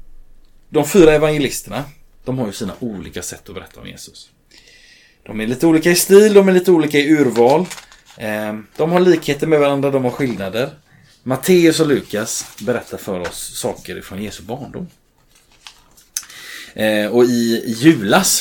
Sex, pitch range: male, 115-165 Hz